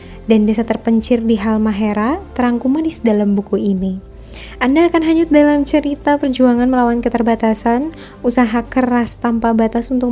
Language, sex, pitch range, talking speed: Indonesian, female, 220-255 Hz, 140 wpm